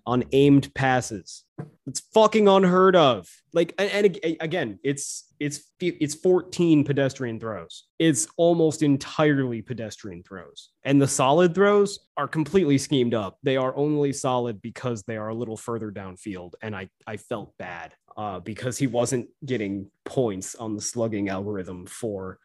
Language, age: English, 20-39